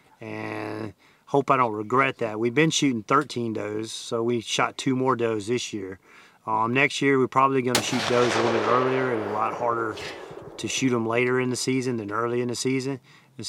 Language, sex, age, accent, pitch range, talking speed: English, male, 30-49, American, 115-130 Hz, 215 wpm